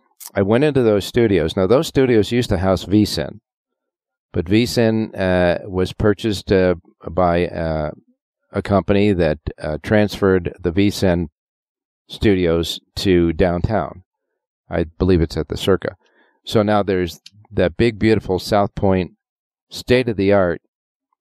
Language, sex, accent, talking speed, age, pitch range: English, male, American, 125 wpm, 40-59, 85-105 Hz